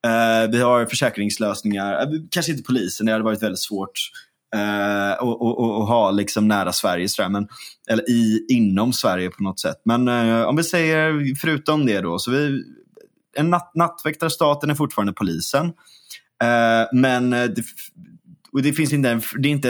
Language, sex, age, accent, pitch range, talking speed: Swedish, male, 20-39, native, 100-135 Hz, 175 wpm